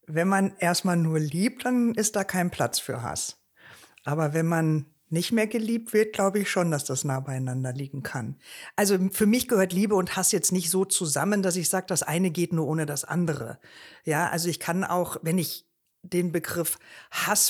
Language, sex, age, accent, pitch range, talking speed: German, female, 50-69, German, 170-210 Hz, 200 wpm